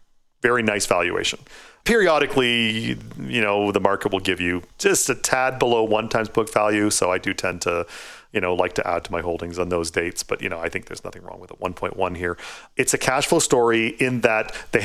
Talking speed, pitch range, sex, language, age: 220 wpm, 90-110 Hz, male, English, 40-59